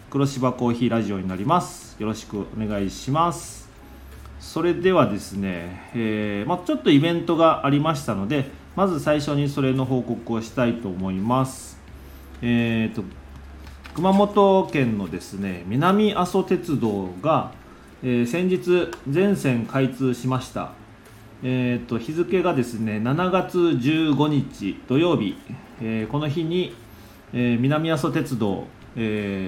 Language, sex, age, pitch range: Japanese, male, 40-59, 105-150 Hz